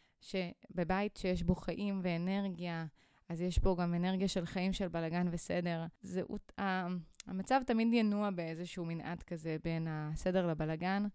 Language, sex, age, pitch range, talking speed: Hebrew, female, 20-39, 175-205 Hz, 130 wpm